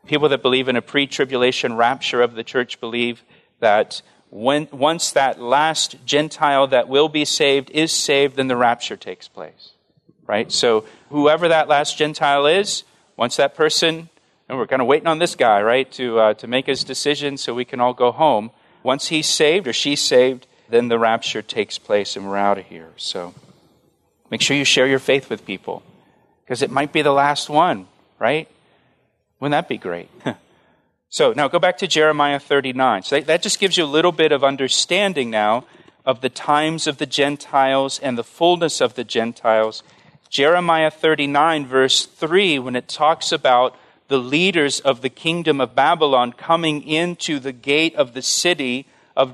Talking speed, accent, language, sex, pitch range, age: 180 wpm, American, English, male, 125-155 Hz, 40-59